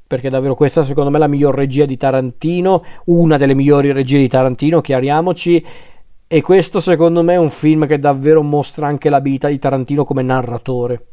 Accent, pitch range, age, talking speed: native, 135-165 Hz, 40-59, 185 wpm